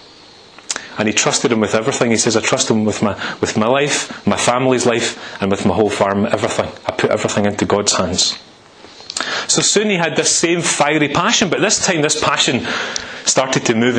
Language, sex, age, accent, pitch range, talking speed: English, male, 30-49, British, 115-150 Hz, 200 wpm